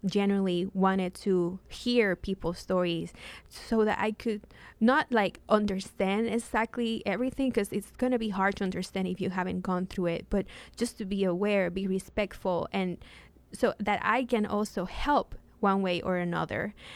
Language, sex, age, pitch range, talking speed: English, female, 20-39, 185-220 Hz, 165 wpm